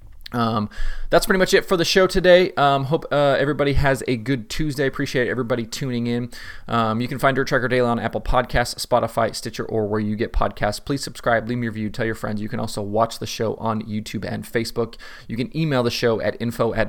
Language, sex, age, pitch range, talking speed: English, male, 20-39, 105-120 Hz, 230 wpm